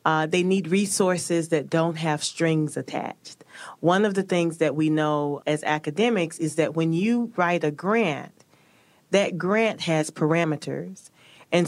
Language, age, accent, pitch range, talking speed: English, 40-59, American, 155-185 Hz, 155 wpm